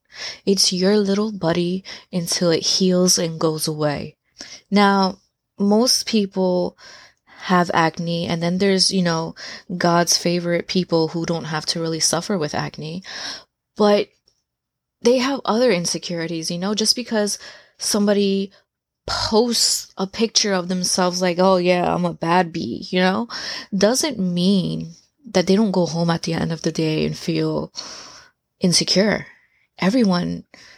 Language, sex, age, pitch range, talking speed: English, female, 20-39, 175-205 Hz, 140 wpm